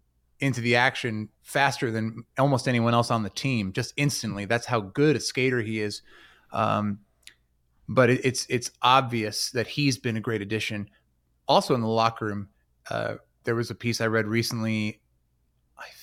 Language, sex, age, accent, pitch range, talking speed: English, male, 30-49, American, 105-125 Hz, 170 wpm